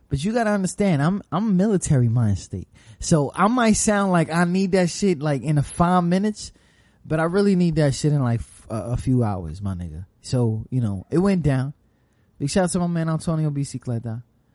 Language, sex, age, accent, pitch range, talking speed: English, male, 20-39, American, 125-205 Hz, 210 wpm